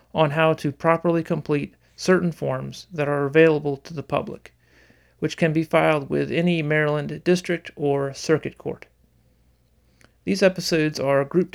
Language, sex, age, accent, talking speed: English, male, 40-59, American, 145 wpm